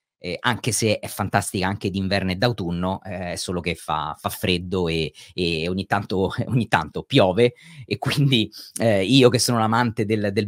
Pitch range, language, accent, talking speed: 100-130 Hz, Italian, native, 190 wpm